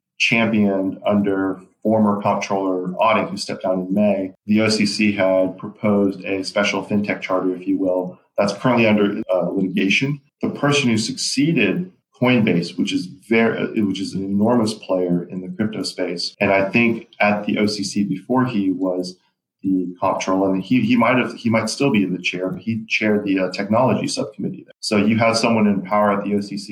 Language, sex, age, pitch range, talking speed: English, male, 40-59, 95-105 Hz, 185 wpm